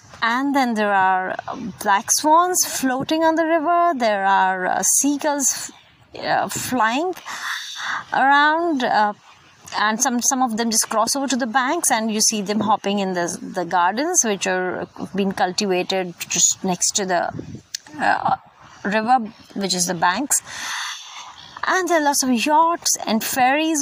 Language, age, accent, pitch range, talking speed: English, 30-49, Indian, 205-285 Hz, 155 wpm